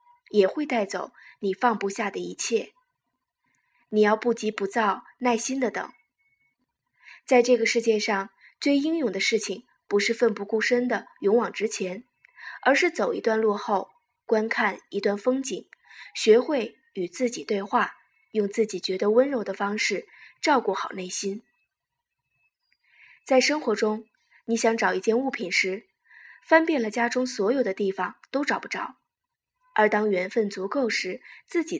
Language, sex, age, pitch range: Chinese, female, 20-39, 205-280 Hz